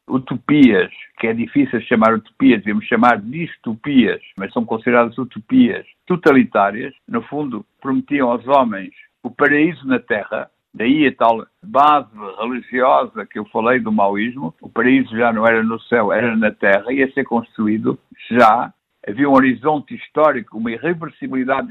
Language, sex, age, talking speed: Portuguese, male, 60-79, 145 wpm